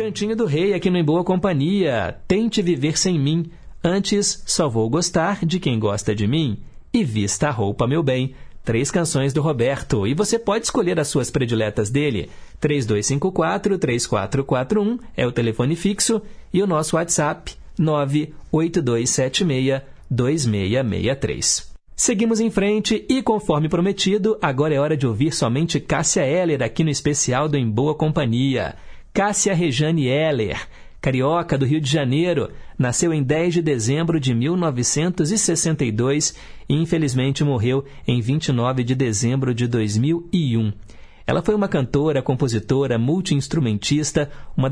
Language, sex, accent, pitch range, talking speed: Portuguese, male, Brazilian, 125-175 Hz, 135 wpm